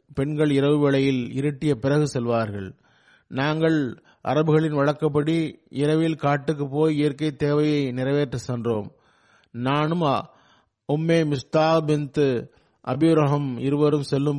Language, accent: Tamil, native